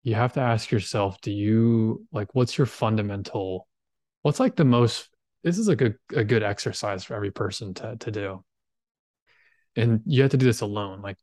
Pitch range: 100-120 Hz